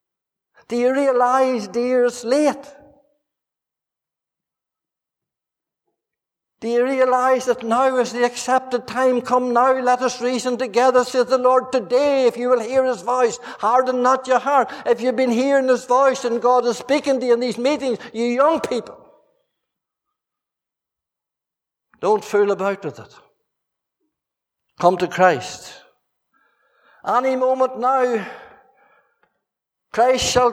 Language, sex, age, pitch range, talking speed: English, male, 60-79, 235-260 Hz, 130 wpm